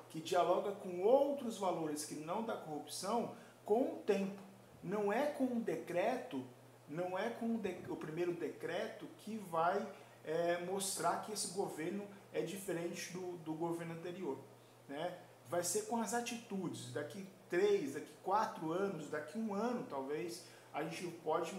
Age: 40-59